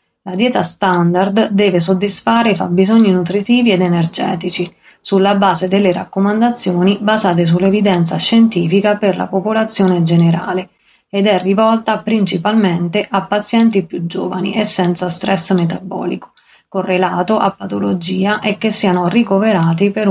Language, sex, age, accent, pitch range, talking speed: Italian, female, 30-49, native, 180-205 Hz, 120 wpm